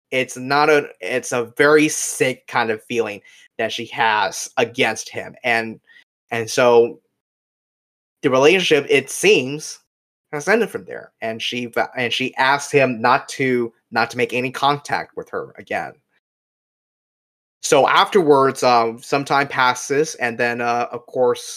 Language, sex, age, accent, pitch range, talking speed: English, male, 20-39, American, 120-155 Hz, 145 wpm